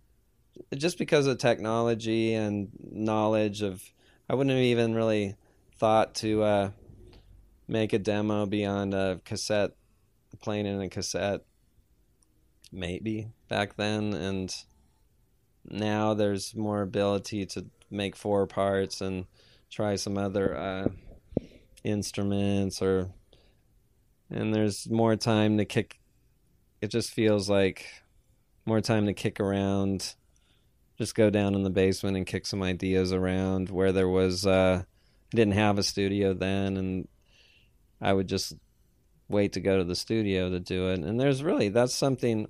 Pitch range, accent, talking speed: 95-110 Hz, American, 140 wpm